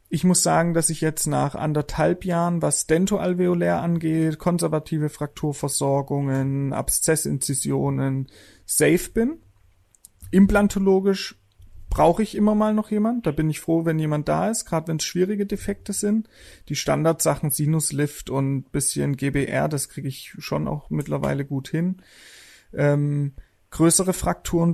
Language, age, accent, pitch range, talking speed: German, 30-49, German, 145-180 Hz, 135 wpm